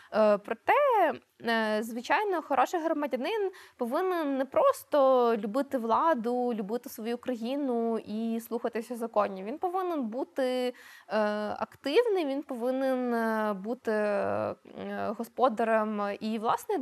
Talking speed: 90 wpm